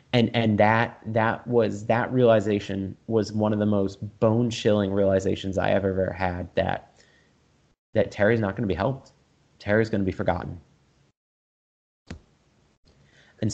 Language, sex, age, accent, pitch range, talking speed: English, male, 30-49, American, 95-110 Hz, 145 wpm